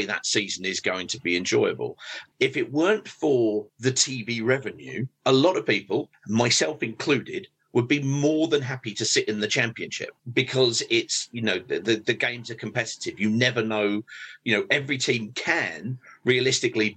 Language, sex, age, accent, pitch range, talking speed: English, male, 40-59, British, 110-155 Hz, 175 wpm